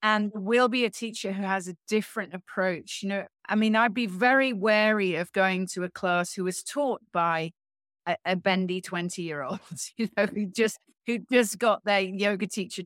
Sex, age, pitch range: female, 30-49, 185-215 Hz